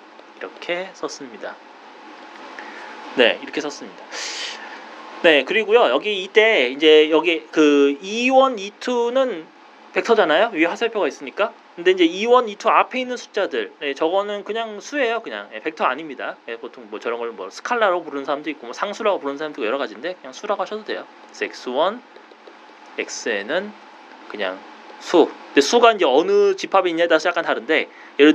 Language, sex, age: Korean, male, 30-49